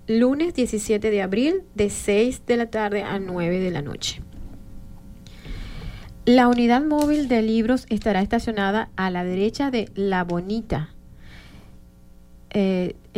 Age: 30-49